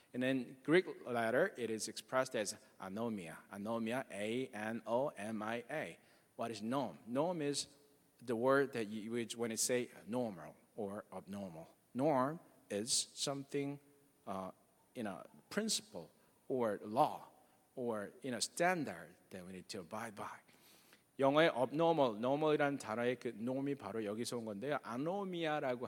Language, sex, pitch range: Korean, male, 110-140 Hz